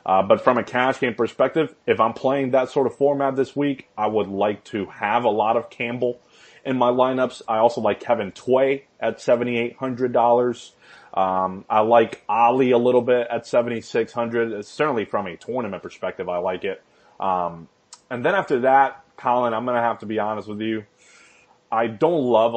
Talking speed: 185 wpm